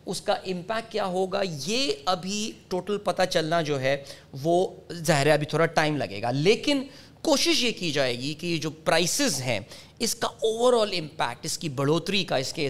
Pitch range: 140-200 Hz